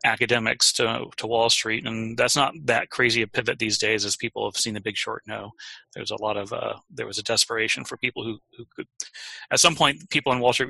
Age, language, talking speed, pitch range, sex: 30-49, English, 245 wpm, 110-125 Hz, male